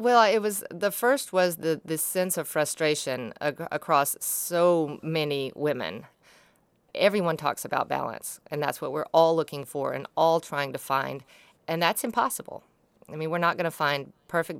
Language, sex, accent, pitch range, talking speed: English, female, American, 145-180 Hz, 175 wpm